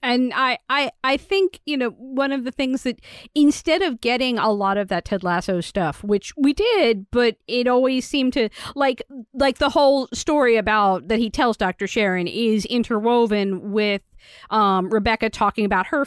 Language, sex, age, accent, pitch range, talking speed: English, female, 40-59, American, 215-275 Hz, 185 wpm